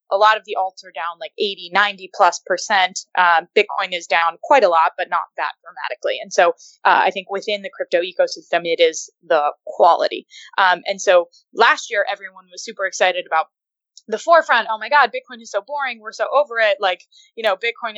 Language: English